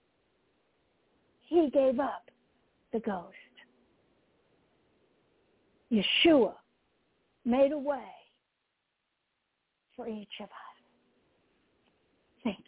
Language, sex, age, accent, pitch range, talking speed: English, female, 60-79, American, 215-335 Hz, 65 wpm